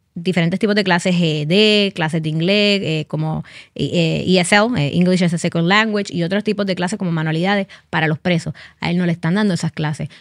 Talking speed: 200 wpm